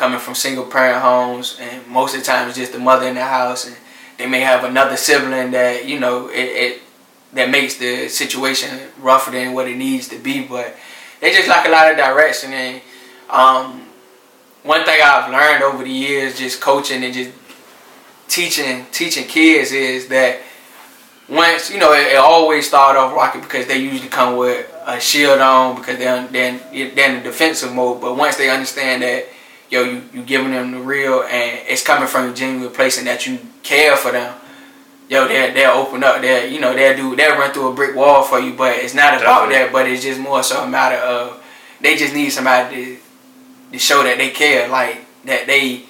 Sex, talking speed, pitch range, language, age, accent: male, 200 wpm, 125-140 Hz, English, 20-39, American